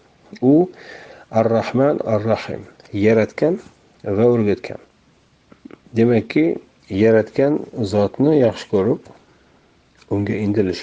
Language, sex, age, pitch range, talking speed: Russian, male, 40-59, 90-100 Hz, 85 wpm